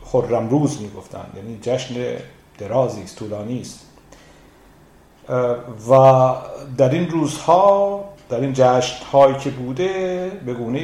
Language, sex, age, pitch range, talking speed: Persian, male, 50-69, 110-155 Hz, 100 wpm